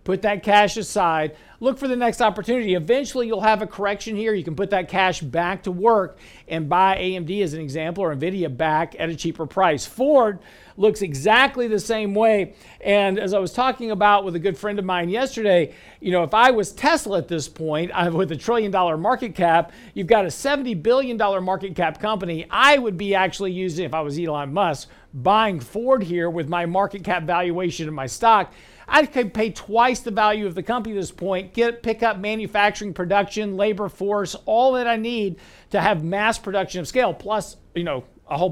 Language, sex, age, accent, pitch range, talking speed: English, male, 50-69, American, 170-215 Hz, 205 wpm